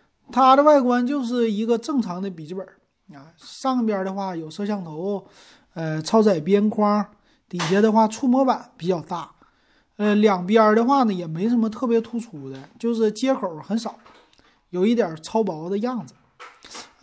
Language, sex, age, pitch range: Chinese, male, 30-49, 165-230 Hz